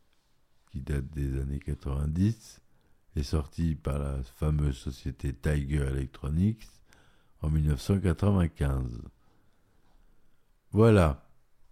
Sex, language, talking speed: male, French, 80 wpm